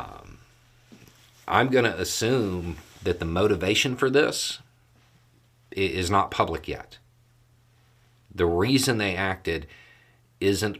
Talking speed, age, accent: 100 wpm, 40-59, American